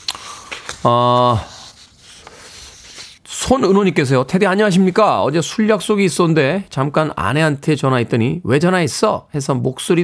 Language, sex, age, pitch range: Korean, male, 40-59, 110-155 Hz